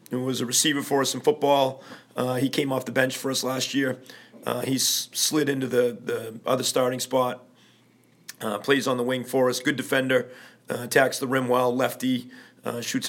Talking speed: 200 wpm